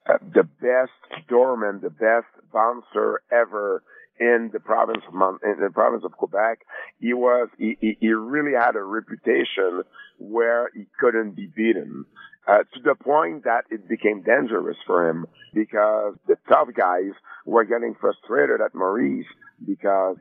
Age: 50-69